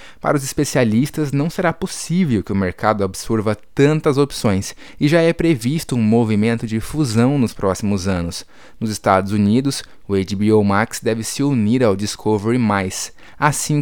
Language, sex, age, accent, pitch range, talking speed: Portuguese, male, 20-39, Brazilian, 100-130 Hz, 150 wpm